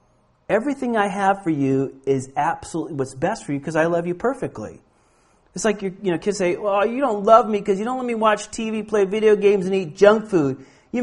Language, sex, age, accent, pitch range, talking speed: Finnish, male, 40-59, American, 135-205 Hz, 240 wpm